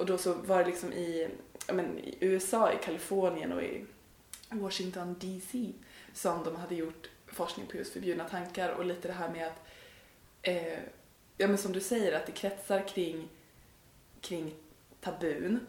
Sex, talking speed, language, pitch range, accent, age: female, 170 wpm, Swedish, 175-200 Hz, native, 20-39